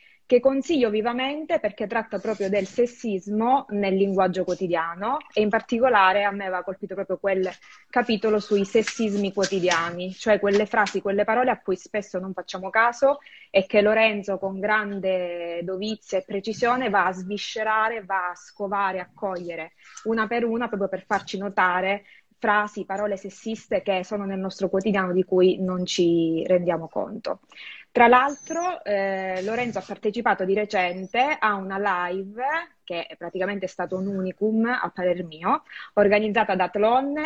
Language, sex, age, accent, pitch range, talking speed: Italian, female, 20-39, native, 185-225 Hz, 150 wpm